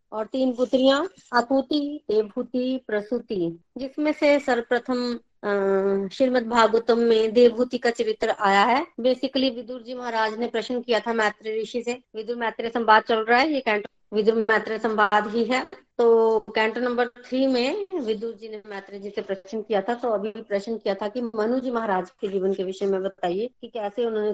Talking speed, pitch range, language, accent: 175 wpm, 210-245 Hz, Hindi, native